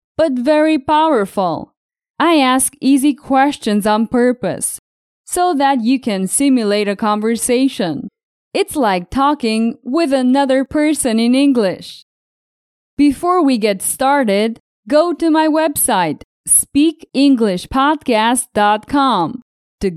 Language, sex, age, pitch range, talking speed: English, female, 20-39, 225-300 Hz, 100 wpm